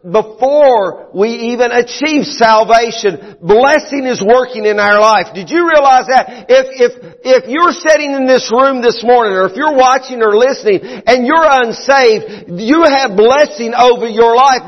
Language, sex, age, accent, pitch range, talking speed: English, male, 50-69, American, 230-275 Hz, 165 wpm